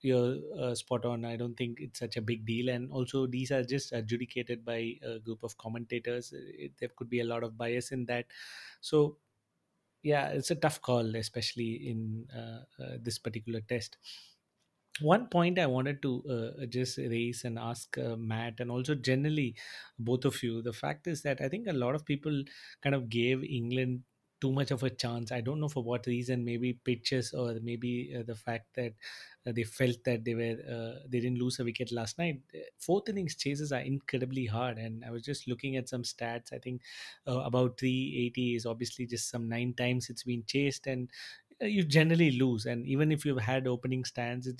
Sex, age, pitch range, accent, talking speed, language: male, 30-49, 120-135 Hz, Indian, 205 wpm, English